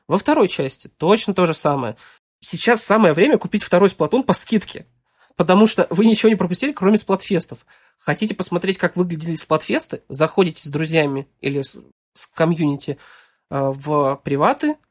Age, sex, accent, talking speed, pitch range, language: 20-39, male, native, 155 wpm, 150-195 Hz, Russian